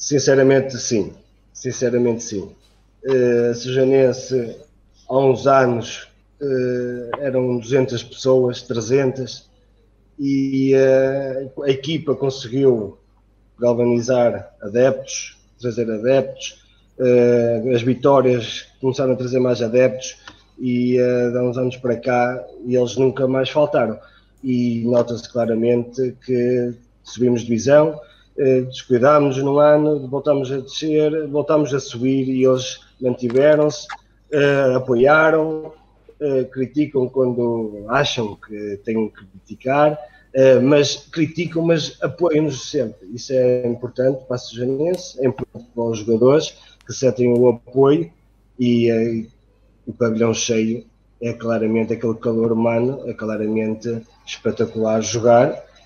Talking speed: 105 wpm